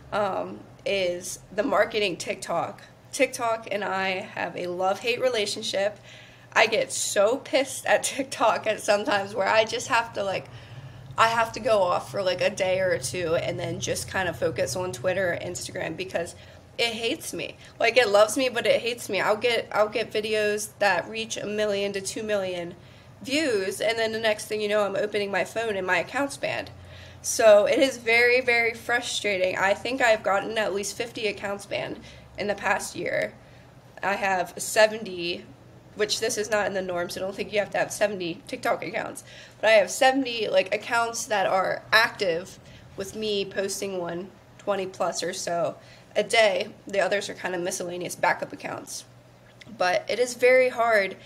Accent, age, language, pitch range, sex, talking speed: American, 20-39, English, 190-235 Hz, female, 185 wpm